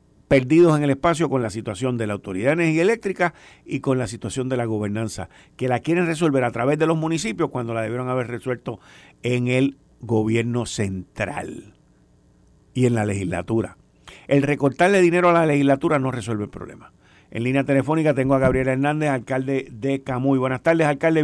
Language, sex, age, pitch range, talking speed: Spanish, male, 50-69, 105-150 Hz, 180 wpm